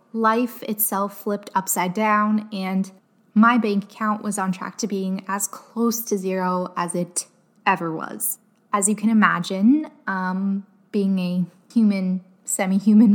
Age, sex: 10-29, female